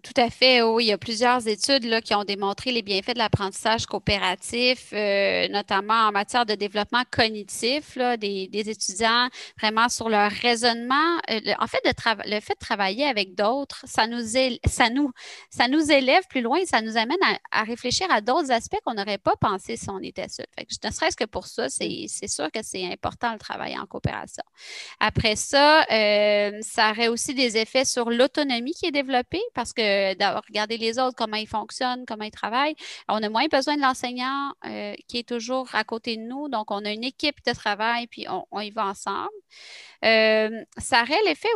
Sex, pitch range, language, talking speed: female, 215-270 Hz, French, 210 wpm